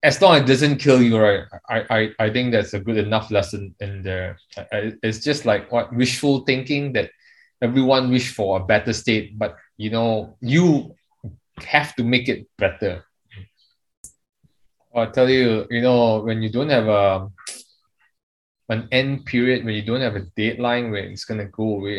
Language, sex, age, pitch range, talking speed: English, male, 20-39, 105-125 Hz, 185 wpm